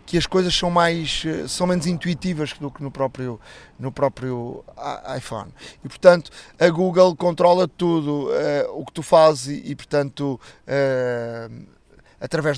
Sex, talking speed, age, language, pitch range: male, 150 wpm, 20-39, Portuguese, 130-160 Hz